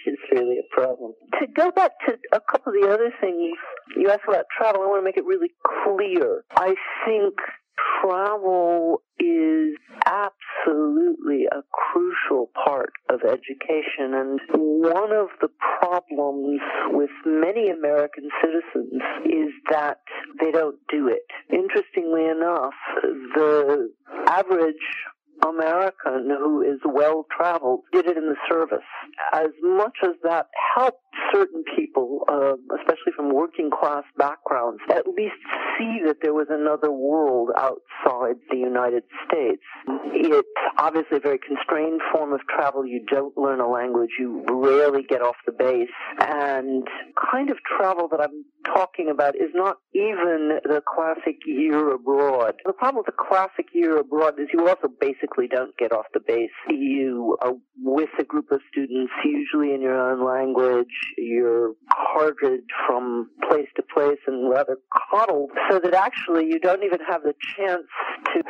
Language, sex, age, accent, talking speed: English, male, 50-69, American, 145 wpm